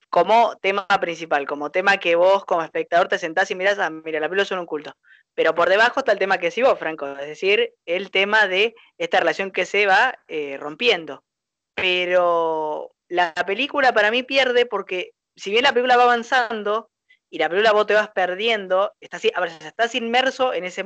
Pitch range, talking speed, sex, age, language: 170-230 Hz, 195 wpm, female, 20-39, Spanish